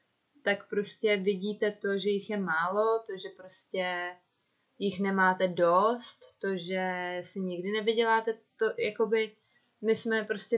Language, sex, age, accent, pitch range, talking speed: Czech, female, 20-39, native, 185-215 Hz, 135 wpm